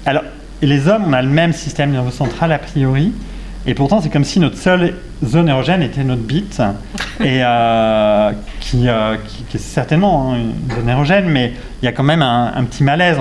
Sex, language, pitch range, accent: male, French, 115-155 Hz, French